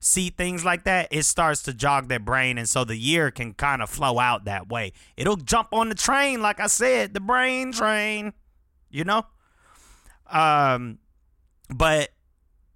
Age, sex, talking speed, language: 30-49, male, 170 wpm, English